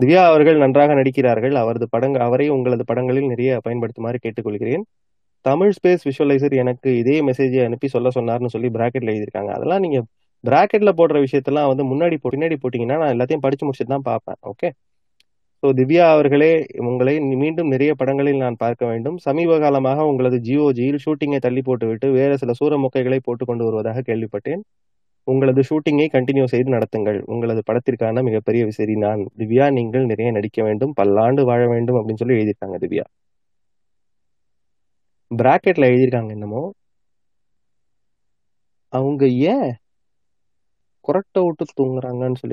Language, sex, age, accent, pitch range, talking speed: Tamil, male, 20-39, native, 120-145 Hz, 105 wpm